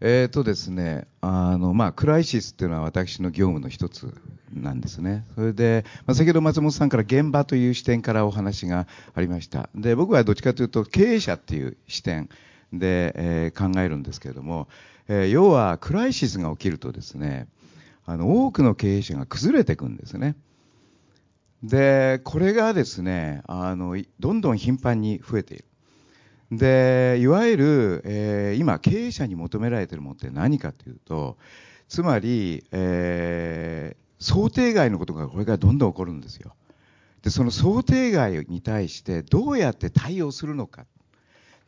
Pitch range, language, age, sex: 90-130 Hz, Japanese, 50-69, male